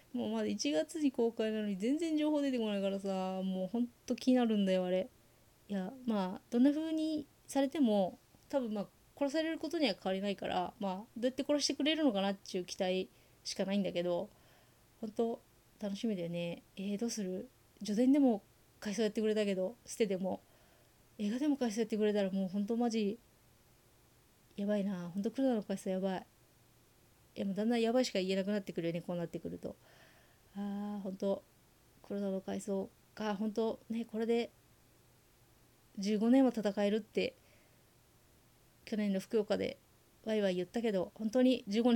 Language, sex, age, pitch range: Japanese, female, 30-49, 195-235 Hz